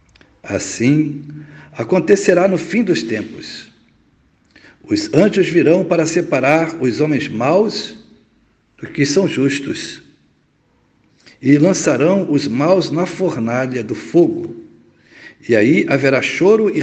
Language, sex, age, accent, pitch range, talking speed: Portuguese, male, 60-79, Brazilian, 125-175 Hz, 110 wpm